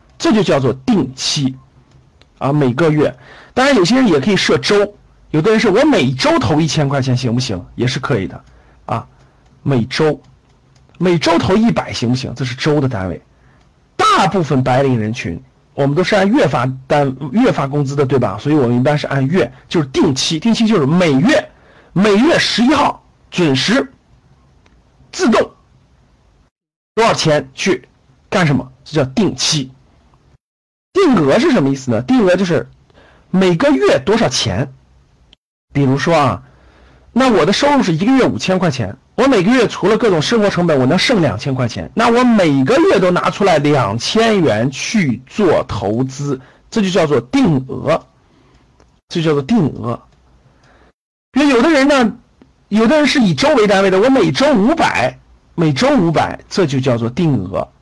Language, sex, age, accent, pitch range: Chinese, male, 50-69, native, 130-195 Hz